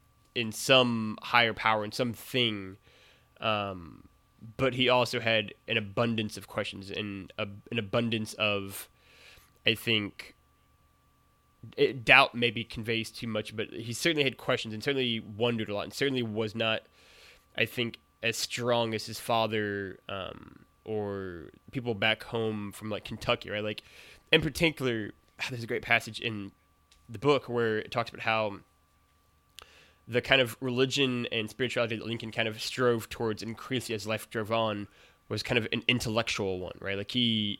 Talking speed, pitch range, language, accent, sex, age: 155 wpm, 100-120 Hz, English, American, male, 20-39